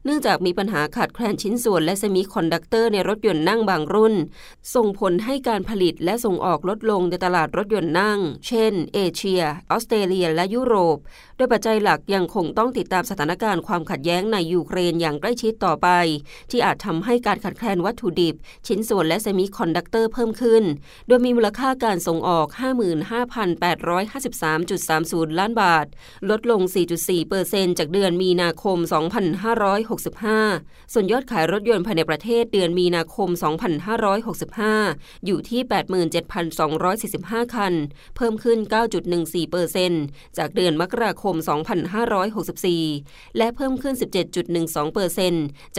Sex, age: female, 20-39